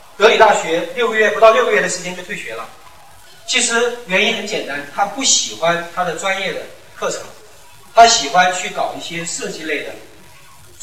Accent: native